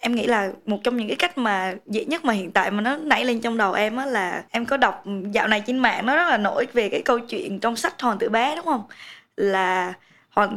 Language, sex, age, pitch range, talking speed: Vietnamese, female, 20-39, 200-245 Hz, 265 wpm